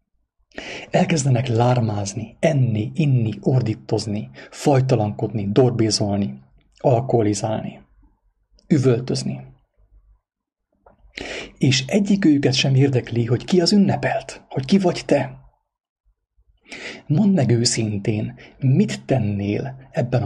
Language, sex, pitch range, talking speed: English, male, 105-140 Hz, 85 wpm